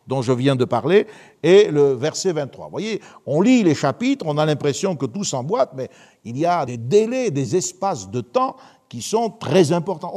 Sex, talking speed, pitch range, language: male, 205 wpm, 135-190 Hz, French